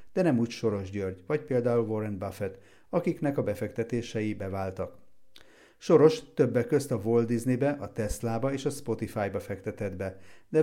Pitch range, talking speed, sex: 100-130 Hz, 150 wpm, male